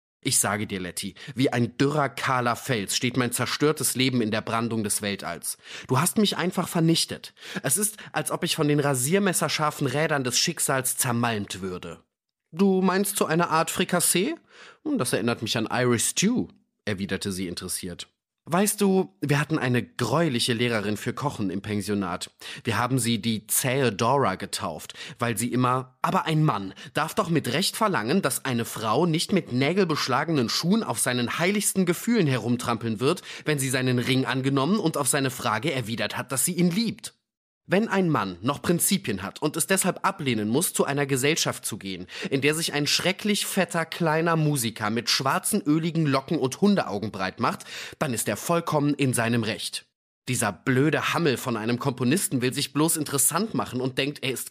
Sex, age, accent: male, 30-49, German